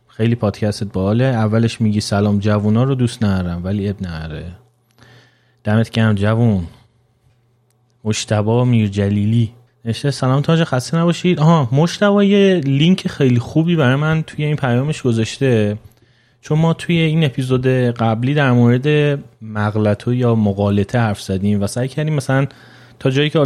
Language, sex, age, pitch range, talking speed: Persian, male, 30-49, 110-130 Hz, 140 wpm